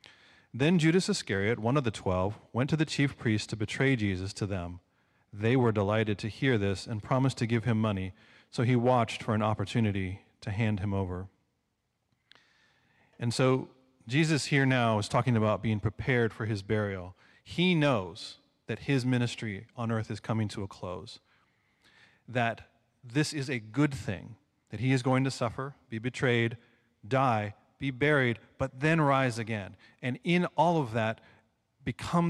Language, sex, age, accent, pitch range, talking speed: English, male, 30-49, American, 110-140 Hz, 170 wpm